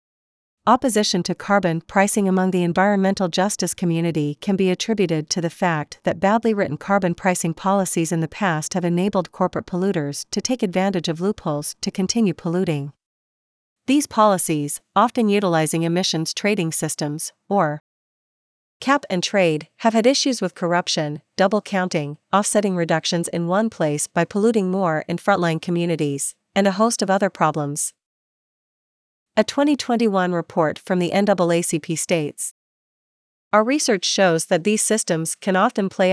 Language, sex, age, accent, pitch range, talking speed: English, female, 40-59, American, 170-200 Hz, 145 wpm